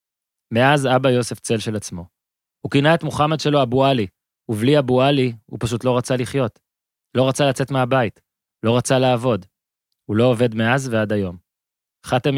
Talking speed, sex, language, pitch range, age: 170 wpm, male, Hebrew, 105-130 Hz, 20-39